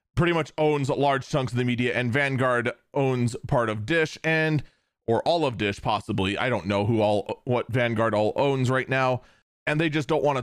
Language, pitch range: English, 125-165 Hz